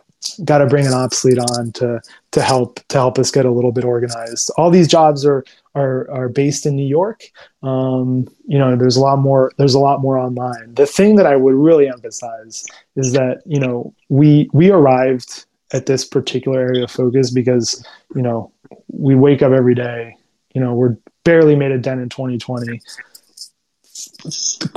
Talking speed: 185 wpm